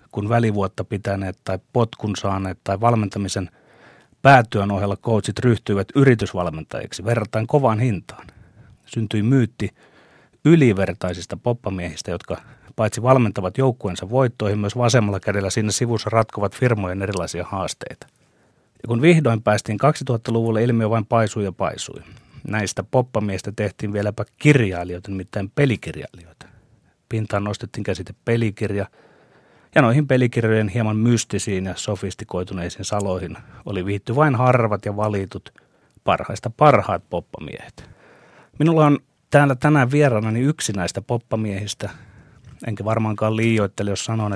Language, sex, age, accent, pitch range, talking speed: Finnish, male, 30-49, native, 100-120 Hz, 115 wpm